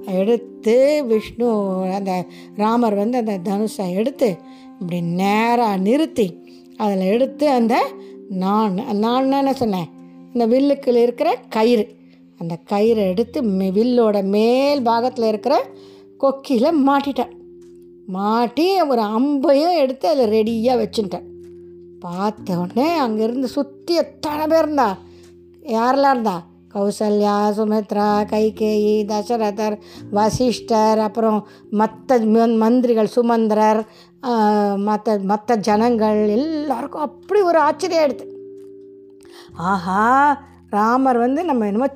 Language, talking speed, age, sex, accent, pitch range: Tamil, 95 wpm, 20-39, female, native, 195-260 Hz